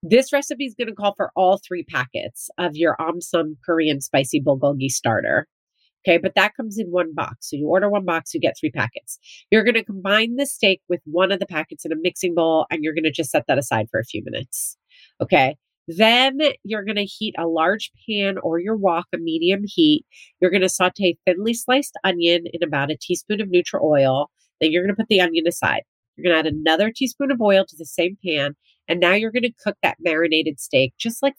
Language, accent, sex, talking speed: English, American, female, 230 wpm